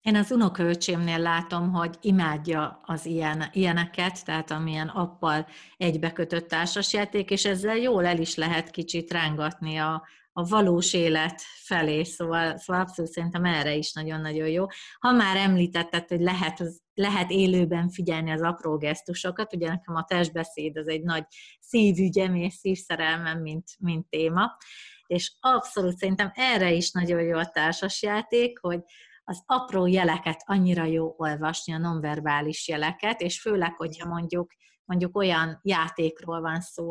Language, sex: Hungarian, female